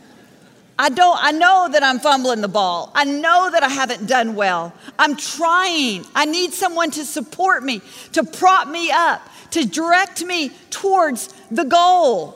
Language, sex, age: English, female, 40-59